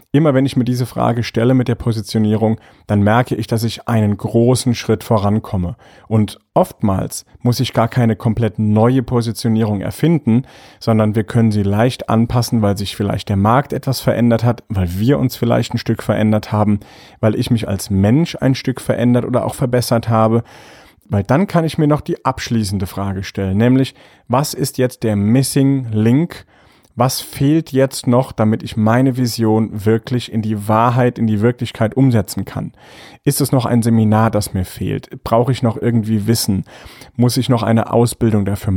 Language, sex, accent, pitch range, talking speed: German, male, German, 110-130 Hz, 180 wpm